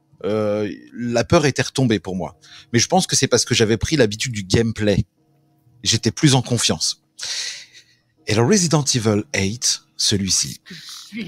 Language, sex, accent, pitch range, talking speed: French, male, French, 100-125 Hz, 155 wpm